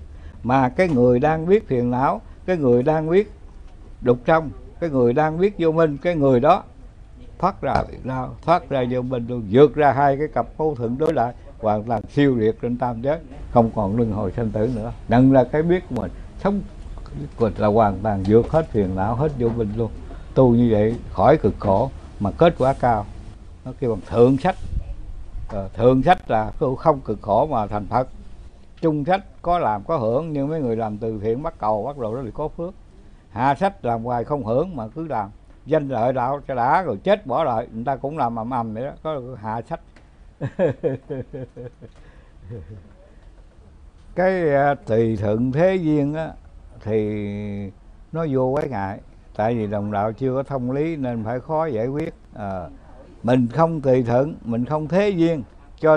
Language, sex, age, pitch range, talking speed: Vietnamese, male, 60-79, 105-150 Hz, 190 wpm